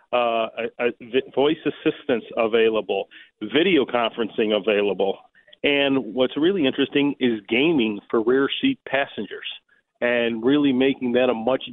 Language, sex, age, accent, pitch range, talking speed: English, male, 40-59, American, 120-140 Hz, 130 wpm